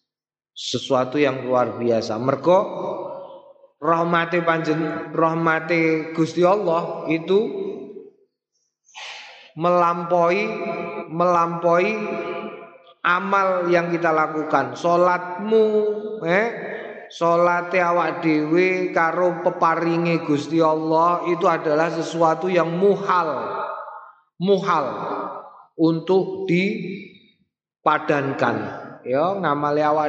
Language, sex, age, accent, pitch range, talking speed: Indonesian, male, 30-49, native, 135-175 Hz, 70 wpm